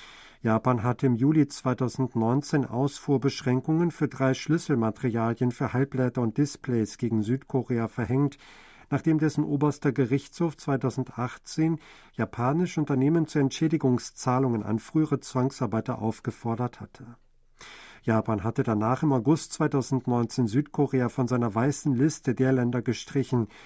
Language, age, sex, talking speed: German, 50-69, male, 110 wpm